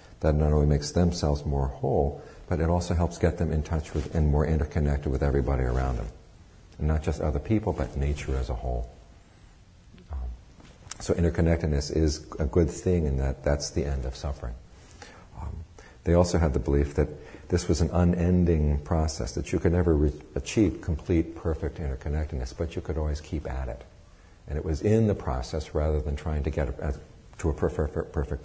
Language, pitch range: English, 70-85 Hz